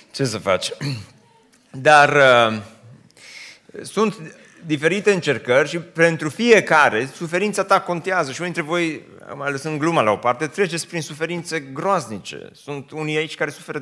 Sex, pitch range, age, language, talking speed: male, 140-180 Hz, 30-49, Romanian, 150 wpm